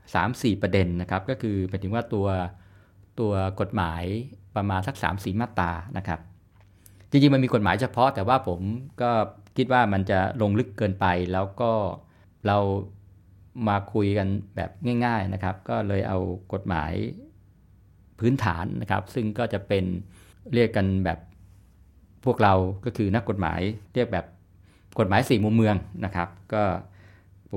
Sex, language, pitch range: male, Thai, 95-115 Hz